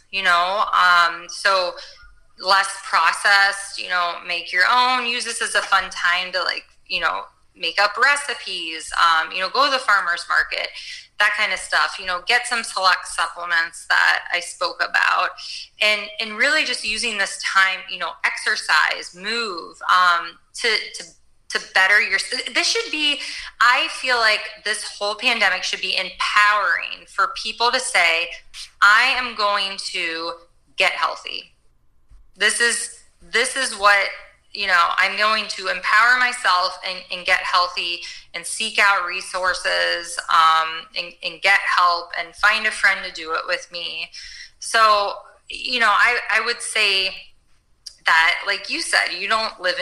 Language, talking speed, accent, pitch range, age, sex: English, 160 wpm, American, 180-225 Hz, 20-39, female